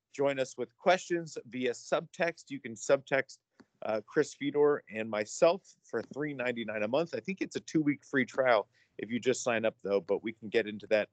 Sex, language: male, English